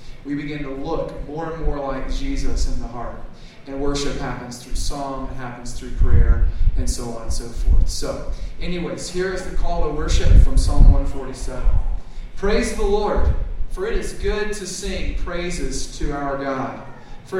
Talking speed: 180 wpm